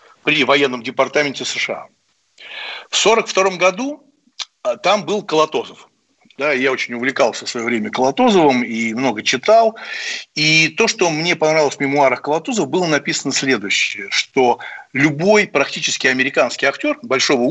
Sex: male